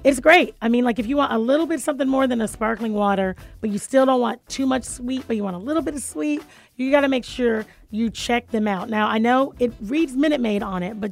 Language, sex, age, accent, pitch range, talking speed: English, female, 30-49, American, 210-270 Hz, 275 wpm